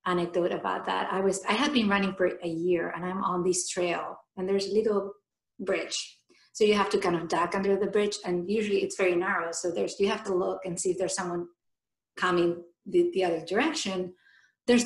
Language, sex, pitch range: English, female, 180-230 Hz